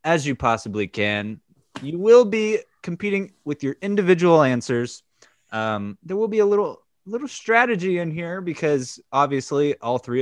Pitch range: 110-160 Hz